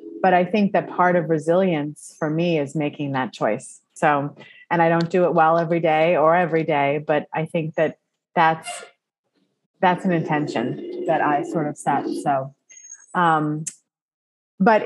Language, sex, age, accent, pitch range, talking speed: English, female, 30-49, American, 150-180 Hz, 165 wpm